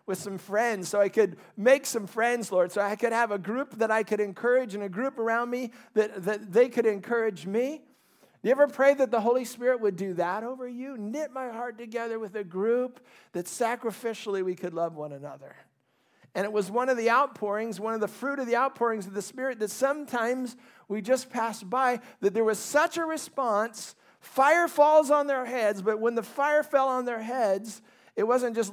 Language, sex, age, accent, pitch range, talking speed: English, male, 50-69, American, 200-255 Hz, 215 wpm